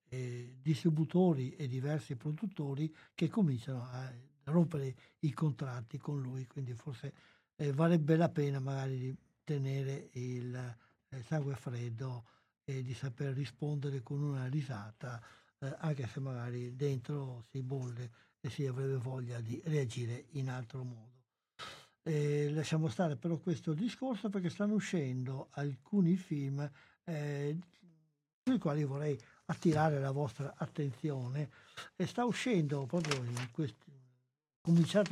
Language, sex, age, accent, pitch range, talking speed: Italian, male, 60-79, native, 130-165 Hz, 130 wpm